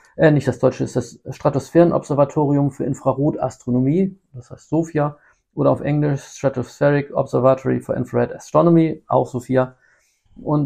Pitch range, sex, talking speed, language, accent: 120-150 Hz, male, 135 wpm, German, German